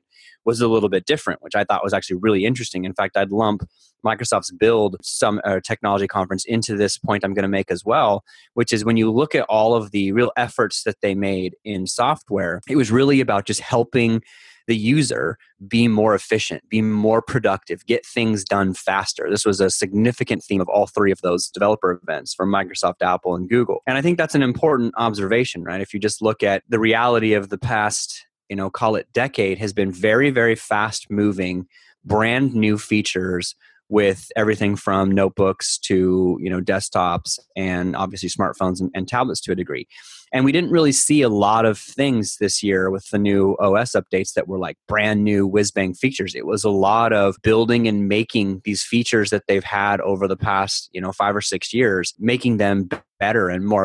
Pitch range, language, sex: 95-115 Hz, English, male